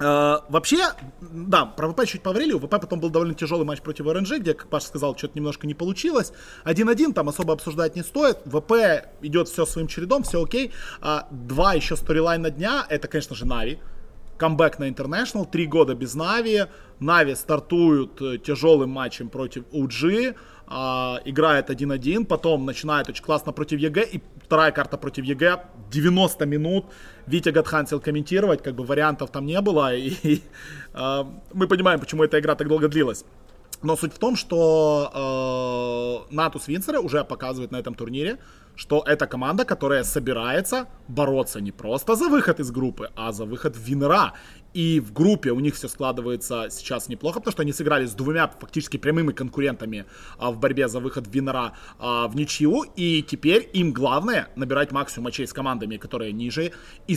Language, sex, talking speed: Russian, male, 170 wpm